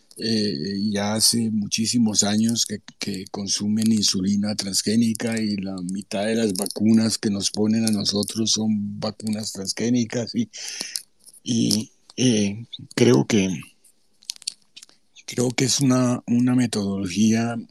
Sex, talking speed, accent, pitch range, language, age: male, 120 wpm, Mexican, 105-125 Hz, Spanish, 60-79